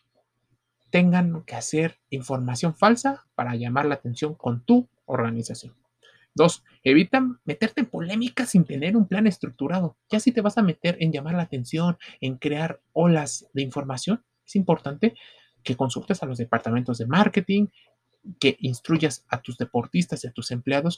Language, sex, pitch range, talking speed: Spanish, male, 130-200 Hz, 155 wpm